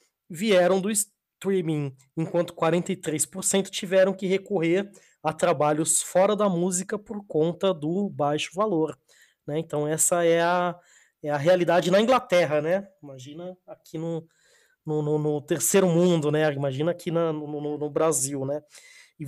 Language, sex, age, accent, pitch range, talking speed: Portuguese, male, 20-39, Brazilian, 160-195 Hz, 145 wpm